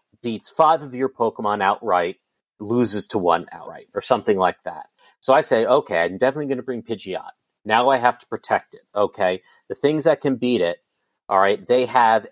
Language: English